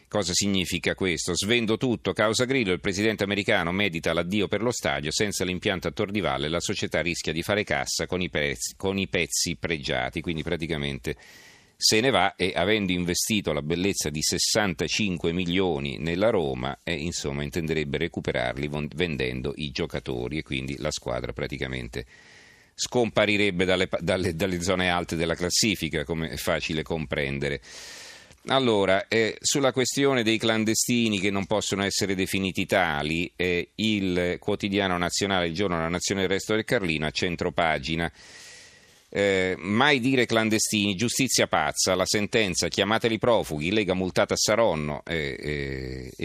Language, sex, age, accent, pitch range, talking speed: Italian, male, 40-59, native, 80-105 Hz, 150 wpm